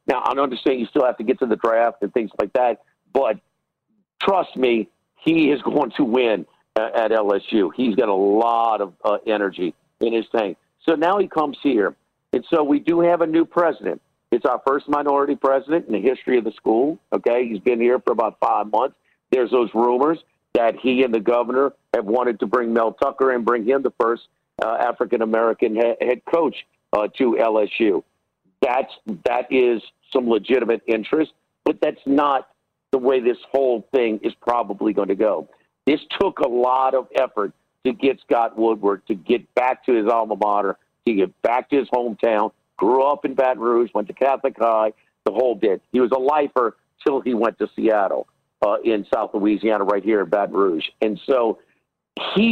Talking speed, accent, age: 190 wpm, American, 50-69